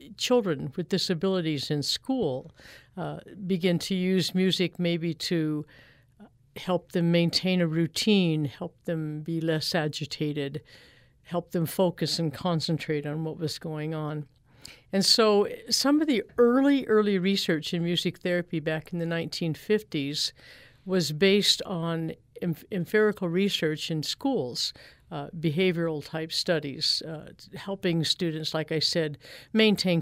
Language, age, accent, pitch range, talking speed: English, 50-69, American, 155-190 Hz, 135 wpm